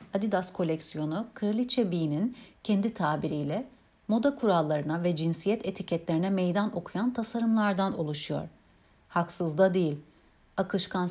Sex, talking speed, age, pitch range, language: female, 105 wpm, 60-79, 160-205 Hz, Turkish